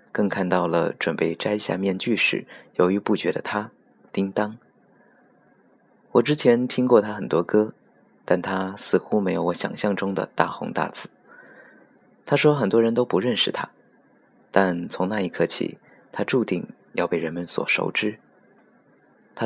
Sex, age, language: male, 20-39, Chinese